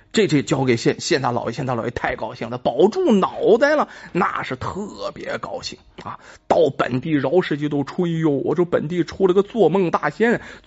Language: Chinese